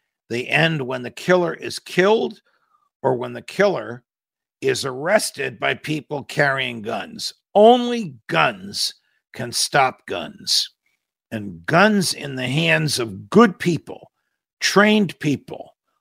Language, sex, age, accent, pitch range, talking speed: English, male, 50-69, American, 135-190 Hz, 120 wpm